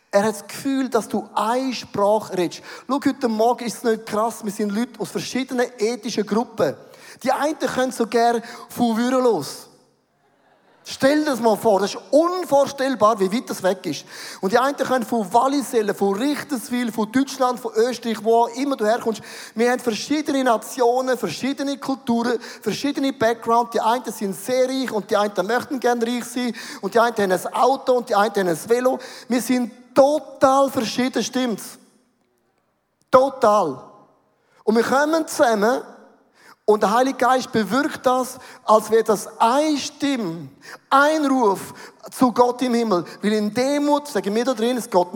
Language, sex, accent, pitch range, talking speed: German, male, German, 220-260 Hz, 170 wpm